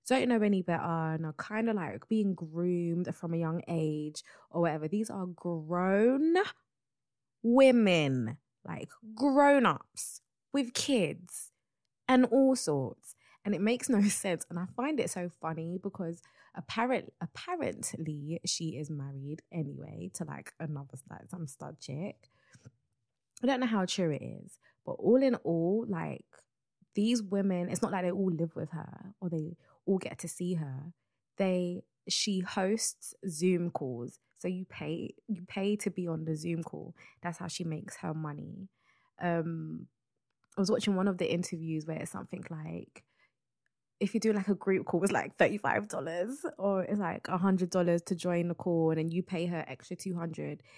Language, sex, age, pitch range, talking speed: English, female, 20-39, 160-205 Hz, 170 wpm